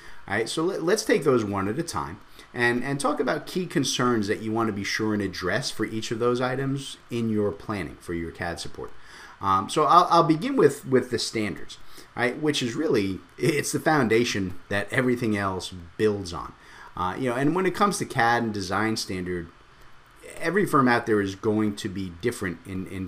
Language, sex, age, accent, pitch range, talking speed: English, male, 30-49, American, 95-120 Hz, 210 wpm